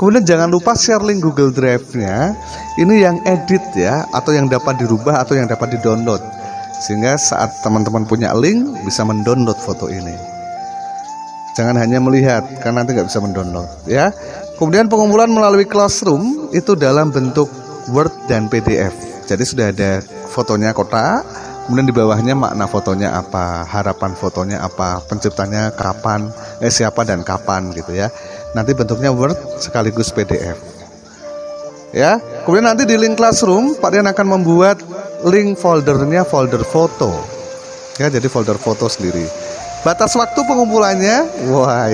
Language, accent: Indonesian, native